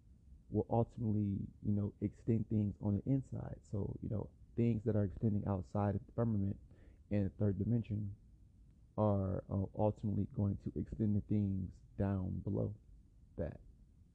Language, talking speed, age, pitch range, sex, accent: English, 150 wpm, 30-49, 95-110 Hz, male, American